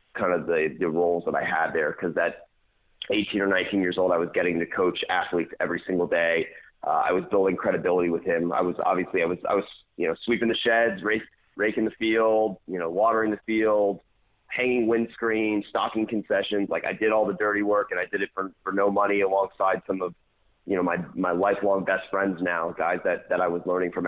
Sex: male